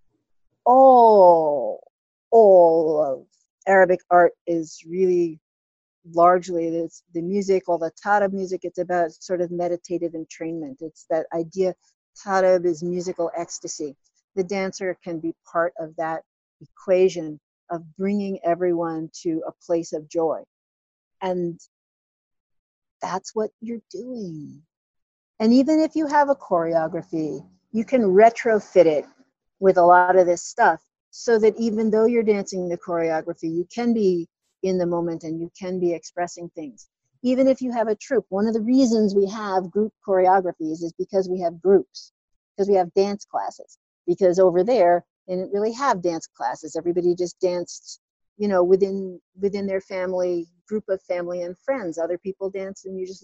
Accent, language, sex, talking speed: American, English, female, 155 wpm